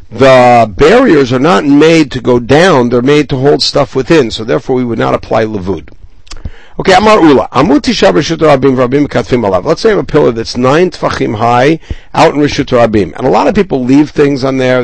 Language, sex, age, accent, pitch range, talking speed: English, male, 60-79, American, 115-160 Hz, 185 wpm